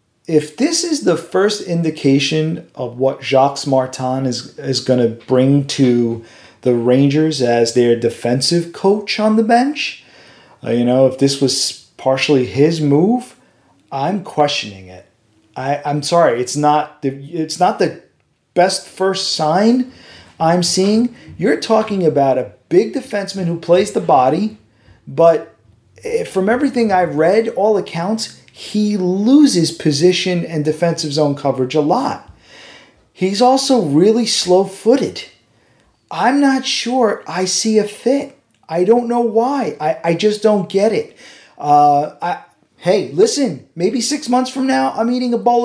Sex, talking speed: male, 145 wpm